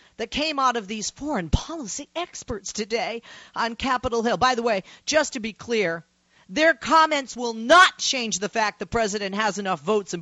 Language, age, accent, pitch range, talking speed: English, 40-59, American, 195-265 Hz, 190 wpm